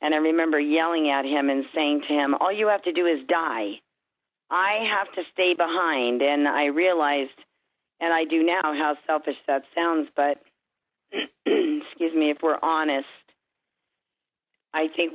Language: English